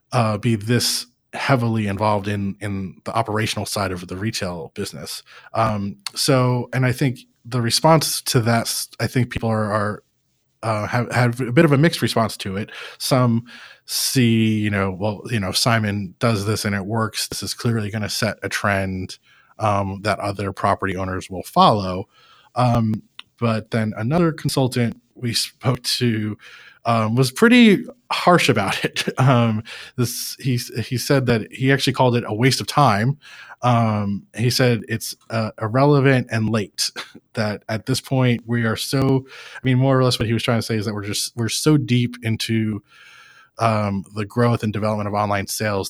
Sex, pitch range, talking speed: male, 105-125 Hz, 175 wpm